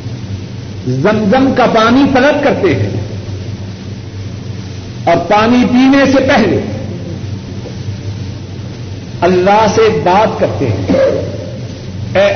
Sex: male